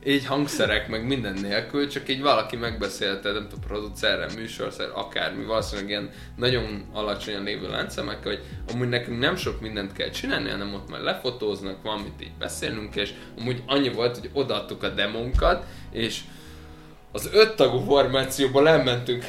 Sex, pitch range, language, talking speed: male, 105-140 Hz, Hungarian, 150 wpm